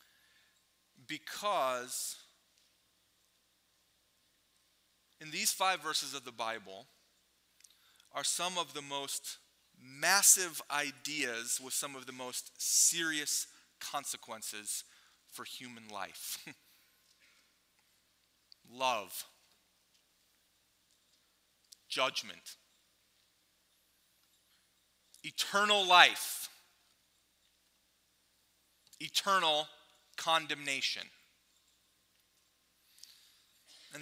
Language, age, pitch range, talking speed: English, 30-49, 105-180 Hz, 55 wpm